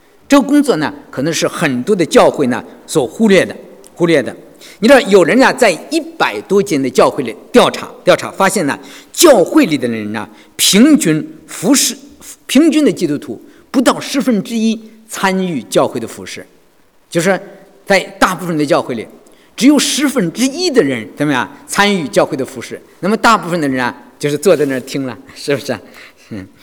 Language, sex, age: English, male, 50-69